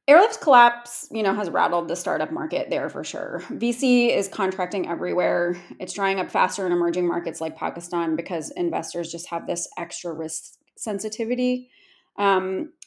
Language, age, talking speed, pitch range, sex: English, 30-49, 160 wpm, 185-245 Hz, female